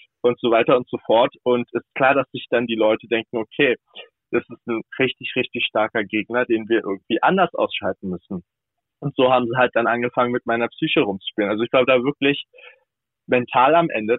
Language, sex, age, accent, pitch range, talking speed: German, male, 20-39, German, 115-130 Hz, 205 wpm